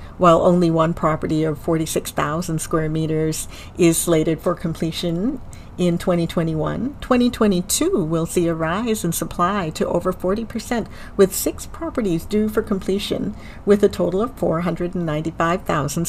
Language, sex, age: English, female, 60-79